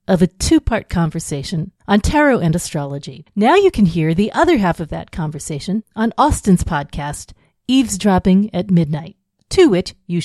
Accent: American